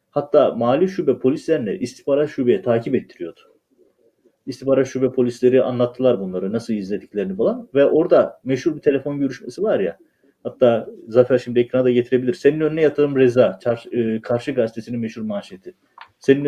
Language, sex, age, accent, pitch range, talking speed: Turkish, male, 40-59, native, 125-150 Hz, 140 wpm